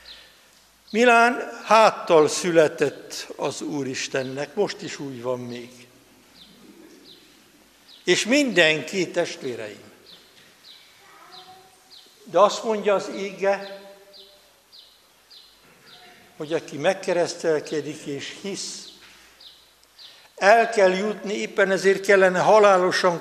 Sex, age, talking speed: male, 60-79, 80 wpm